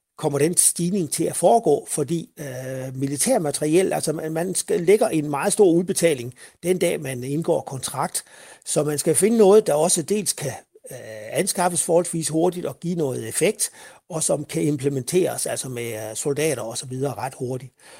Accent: native